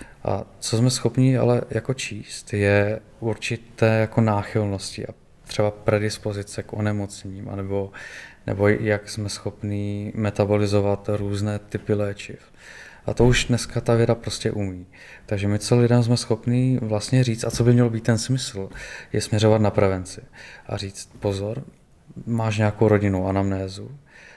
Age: 20-39